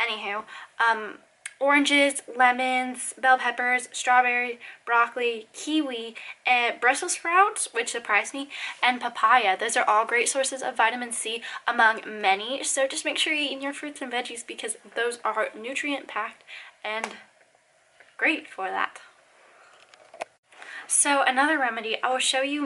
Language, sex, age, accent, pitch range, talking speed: English, female, 10-29, American, 225-270 Hz, 135 wpm